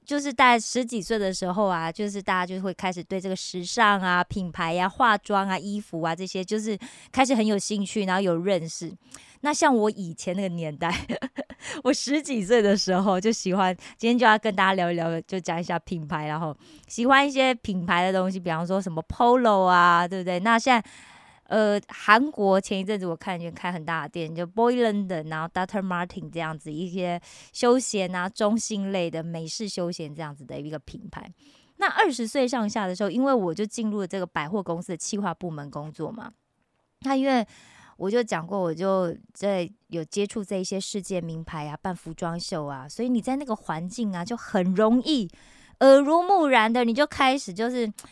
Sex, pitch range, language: female, 180-235 Hz, Korean